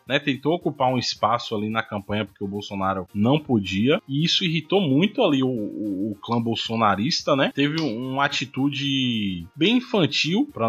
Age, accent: 20-39, Brazilian